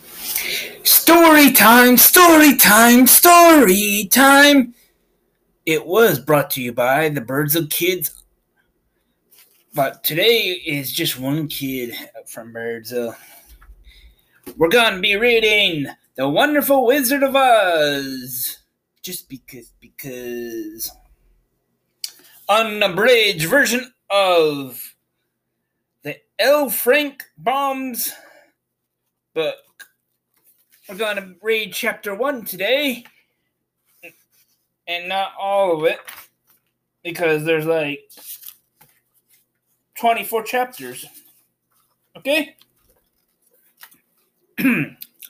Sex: male